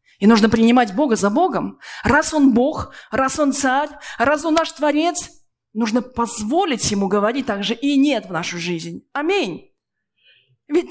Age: 20-39